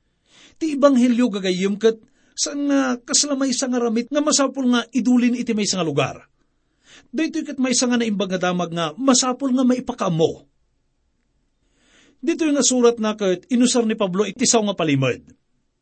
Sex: male